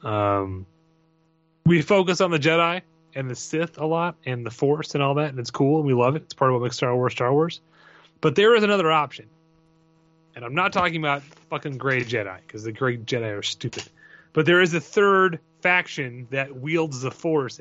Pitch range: 120-160 Hz